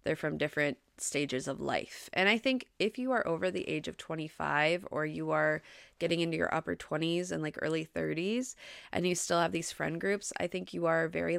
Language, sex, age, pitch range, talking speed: English, female, 20-39, 150-190 Hz, 215 wpm